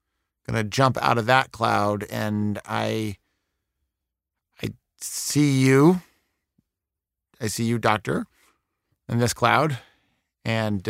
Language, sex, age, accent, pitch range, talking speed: English, male, 50-69, American, 80-110 Hz, 110 wpm